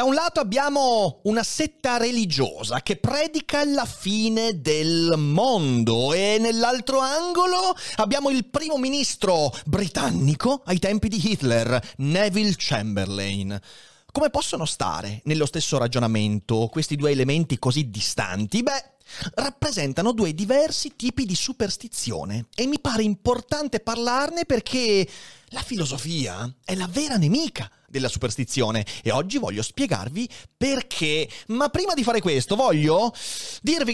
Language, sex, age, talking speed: Italian, male, 30-49, 125 wpm